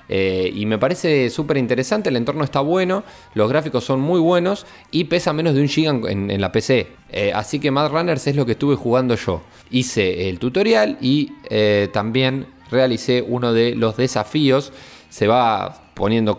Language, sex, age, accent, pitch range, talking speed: Spanish, male, 20-39, Argentinian, 110-145 Hz, 185 wpm